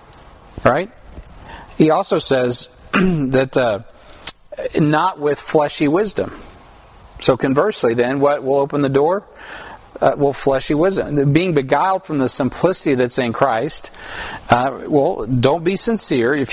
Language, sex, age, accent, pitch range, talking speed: English, male, 40-59, American, 135-180 Hz, 130 wpm